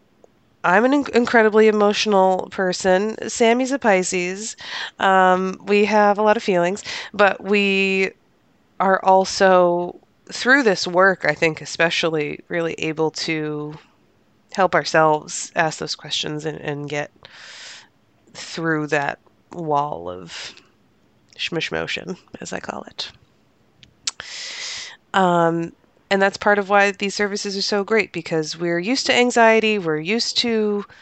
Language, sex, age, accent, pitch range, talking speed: English, female, 20-39, American, 160-200 Hz, 130 wpm